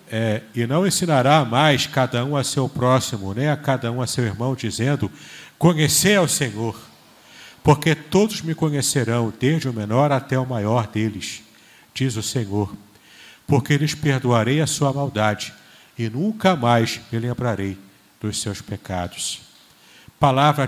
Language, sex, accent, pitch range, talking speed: Portuguese, male, Brazilian, 115-155 Hz, 140 wpm